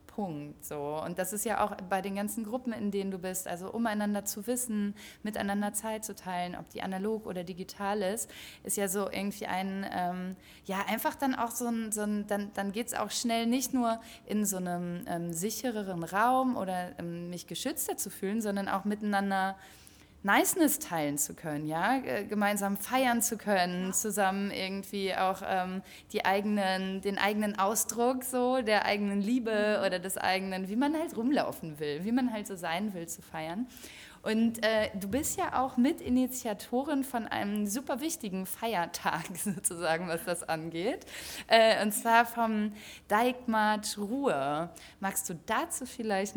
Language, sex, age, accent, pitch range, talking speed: German, female, 20-39, German, 185-225 Hz, 170 wpm